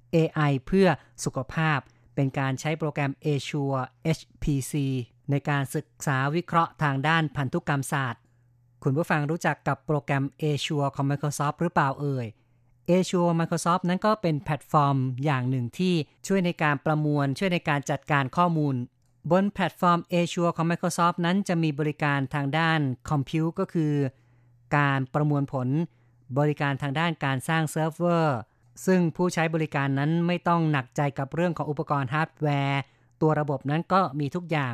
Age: 30-49